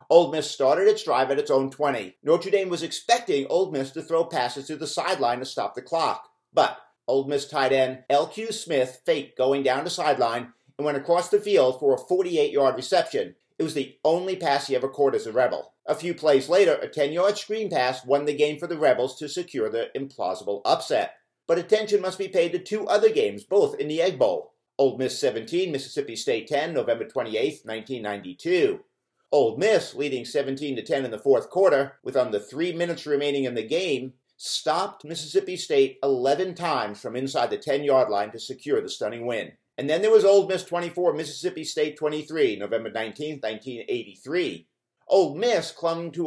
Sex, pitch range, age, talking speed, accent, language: male, 135-220 Hz, 50-69, 195 wpm, American, English